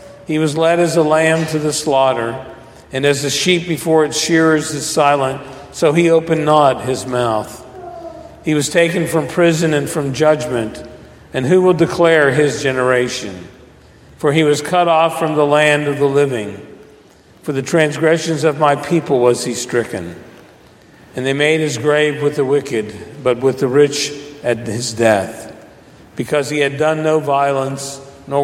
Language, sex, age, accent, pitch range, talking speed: English, male, 50-69, American, 125-160 Hz, 170 wpm